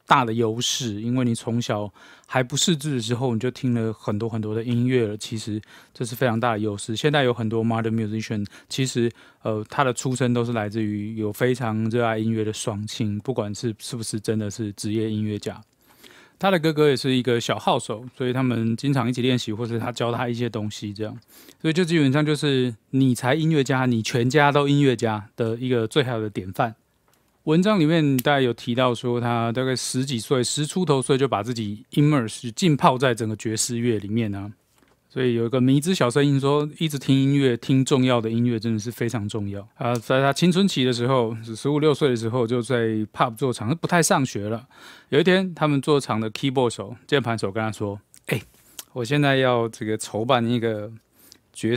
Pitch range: 110-135 Hz